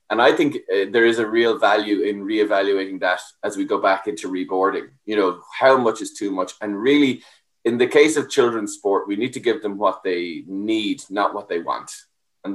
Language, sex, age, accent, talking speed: English, male, 20-39, Irish, 220 wpm